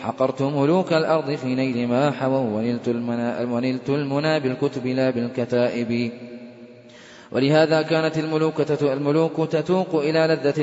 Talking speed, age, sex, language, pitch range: 100 wpm, 20-39, male, Arabic, 130-160 Hz